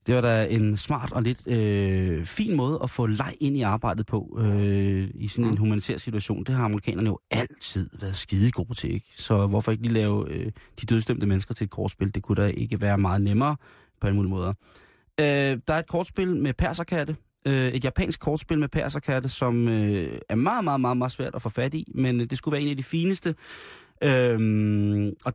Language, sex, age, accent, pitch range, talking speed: Danish, male, 30-49, native, 105-145 Hz, 215 wpm